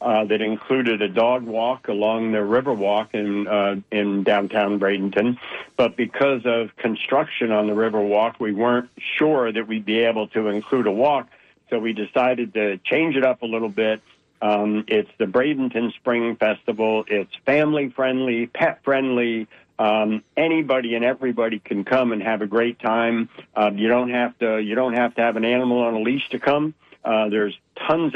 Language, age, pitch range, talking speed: English, 60-79, 105-125 Hz, 185 wpm